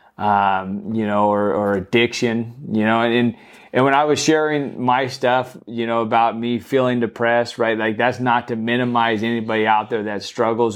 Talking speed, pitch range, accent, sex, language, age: 185 wpm, 105-120 Hz, American, male, English, 30-49